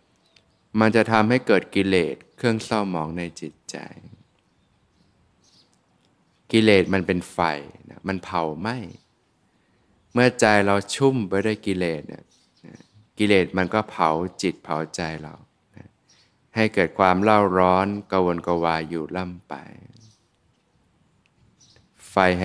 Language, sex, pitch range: Thai, male, 90-105 Hz